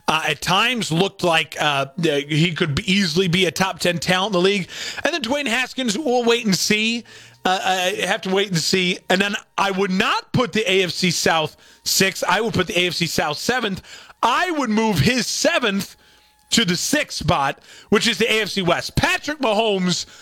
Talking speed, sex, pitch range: 195 wpm, male, 180-235 Hz